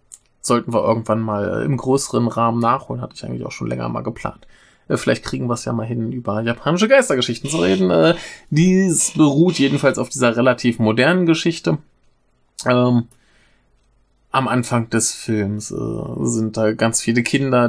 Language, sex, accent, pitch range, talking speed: German, male, German, 110-135 Hz, 165 wpm